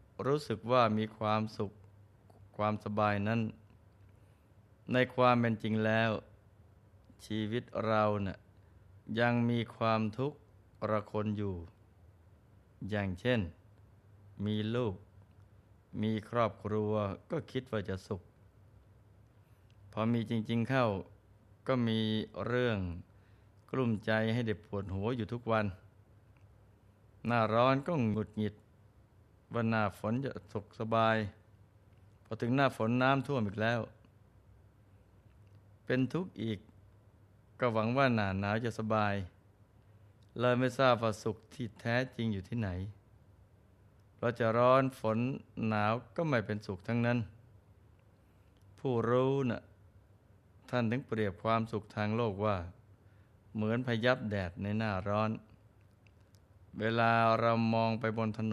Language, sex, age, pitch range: Thai, male, 20-39, 100-115 Hz